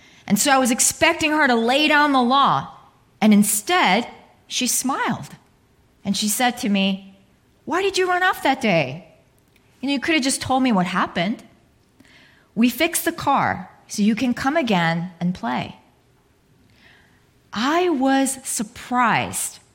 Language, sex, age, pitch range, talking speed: English, female, 30-49, 195-275 Hz, 155 wpm